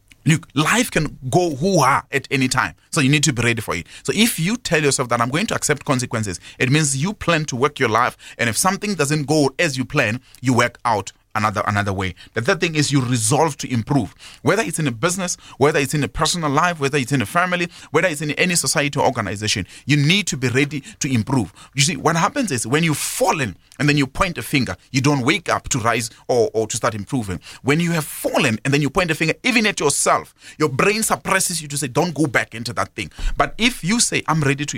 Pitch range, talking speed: 105-155 Hz, 250 wpm